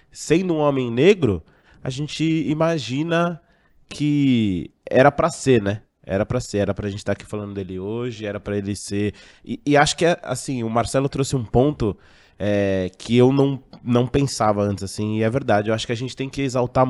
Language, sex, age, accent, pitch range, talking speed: Portuguese, male, 20-39, Brazilian, 110-140 Hz, 200 wpm